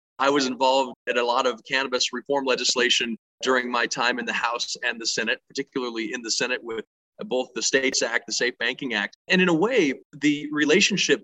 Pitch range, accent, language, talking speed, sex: 130-170 Hz, American, English, 205 wpm, male